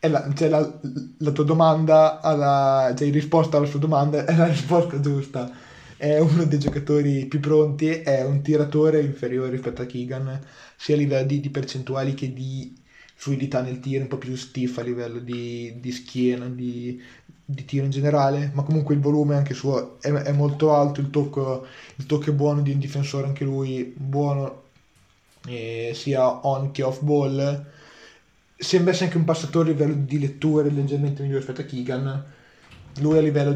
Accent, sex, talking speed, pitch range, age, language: native, male, 180 wpm, 130-145 Hz, 20-39, Italian